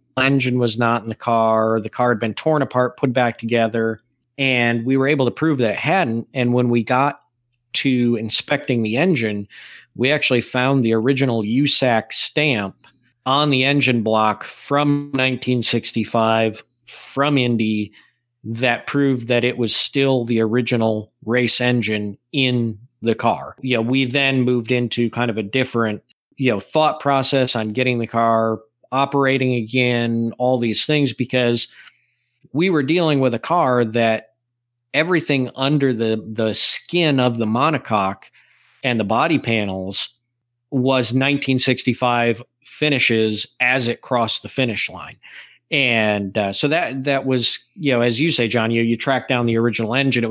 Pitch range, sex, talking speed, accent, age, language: 115-135 Hz, male, 160 wpm, American, 40-59, English